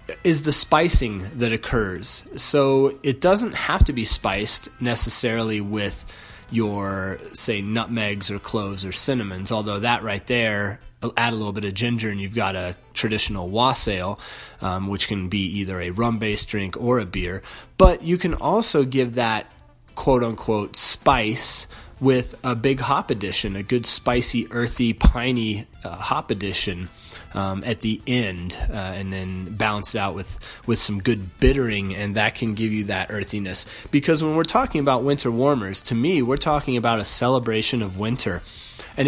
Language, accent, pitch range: English, American, 100-130 Hz